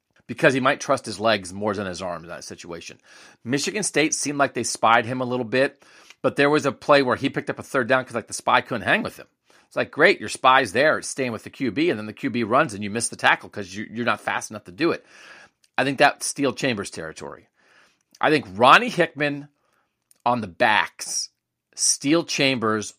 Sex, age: male, 40-59